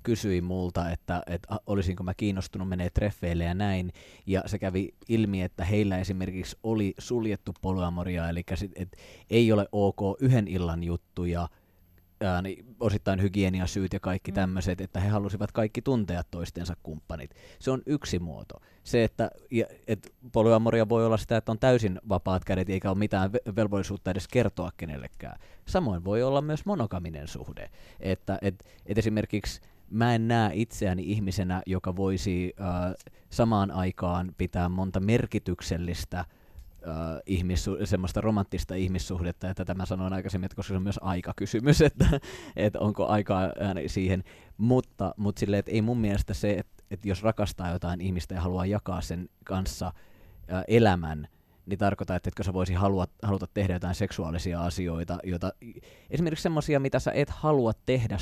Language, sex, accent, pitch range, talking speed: Finnish, male, native, 90-105 Hz, 155 wpm